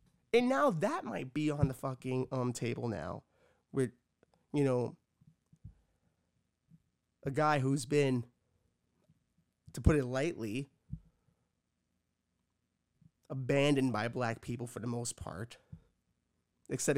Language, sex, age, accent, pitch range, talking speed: English, male, 30-49, American, 125-165 Hz, 110 wpm